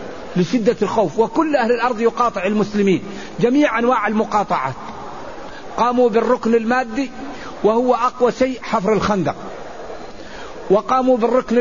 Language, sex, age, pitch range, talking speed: Arabic, male, 50-69, 195-235 Hz, 105 wpm